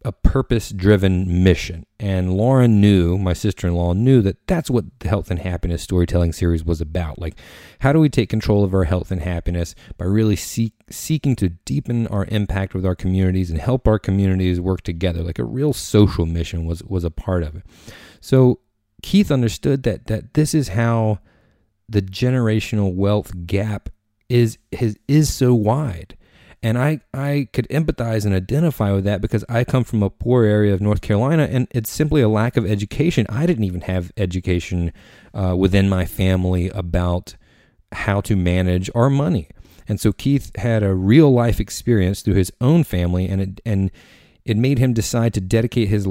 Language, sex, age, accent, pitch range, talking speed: English, male, 30-49, American, 90-115 Hz, 180 wpm